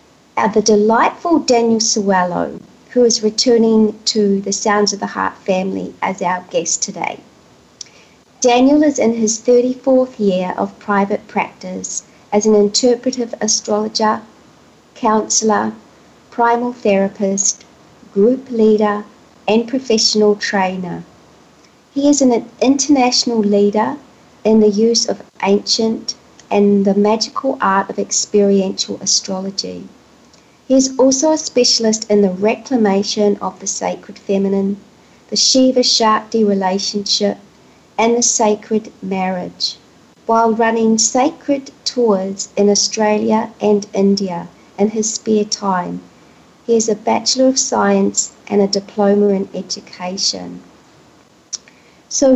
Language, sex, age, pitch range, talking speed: English, female, 50-69, 200-245 Hz, 115 wpm